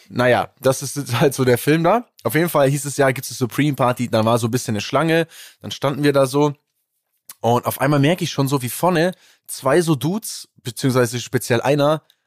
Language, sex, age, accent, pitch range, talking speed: German, male, 20-39, German, 120-155 Hz, 220 wpm